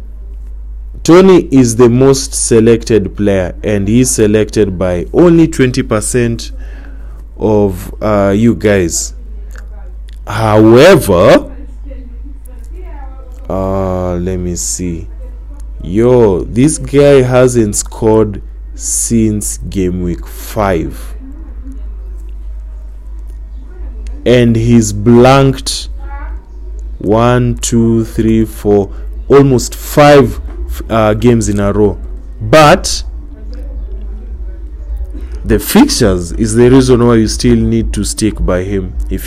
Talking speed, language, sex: 90 wpm, English, male